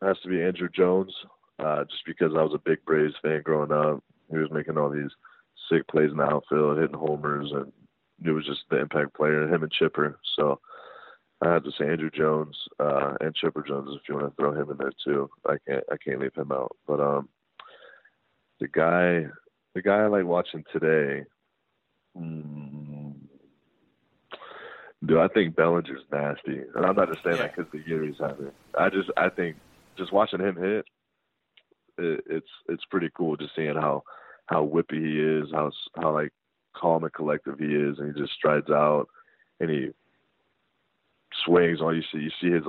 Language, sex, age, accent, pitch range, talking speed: English, male, 30-49, American, 75-85 Hz, 190 wpm